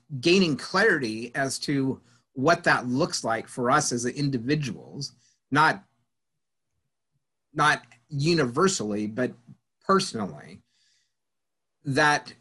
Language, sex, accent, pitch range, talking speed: English, male, American, 120-150 Hz, 85 wpm